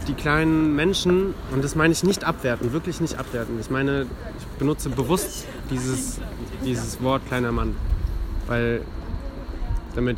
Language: German